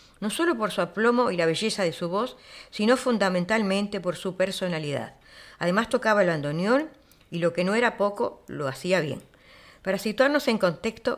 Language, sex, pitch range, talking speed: Spanish, female, 180-230 Hz, 175 wpm